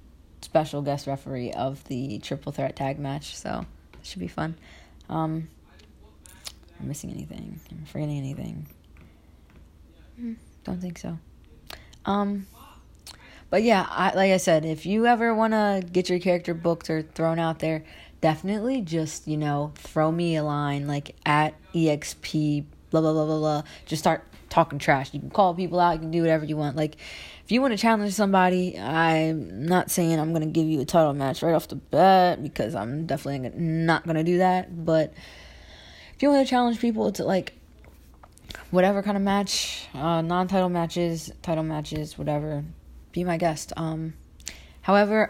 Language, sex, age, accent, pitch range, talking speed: English, female, 20-39, American, 135-175 Hz, 170 wpm